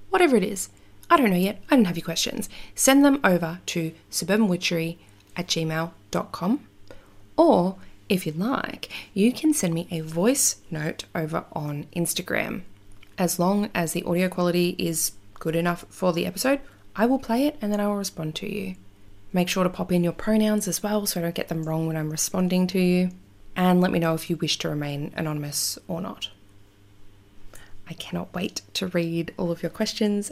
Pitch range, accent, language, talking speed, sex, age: 160-205 Hz, Australian, English, 190 wpm, female, 20-39